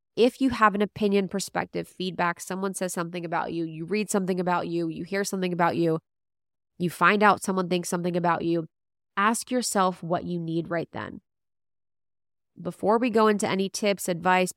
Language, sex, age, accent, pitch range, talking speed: English, female, 20-39, American, 170-210 Hz, 180 wpm